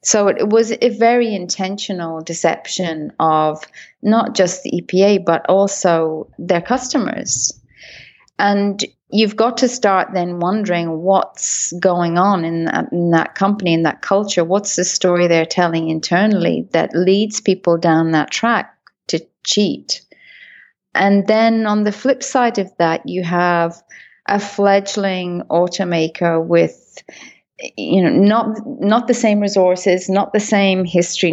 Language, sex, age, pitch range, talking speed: English, female, 30-49, 170-205 Hz, 140 wpm